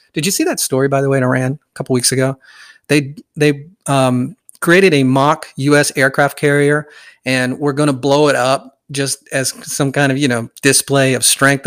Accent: American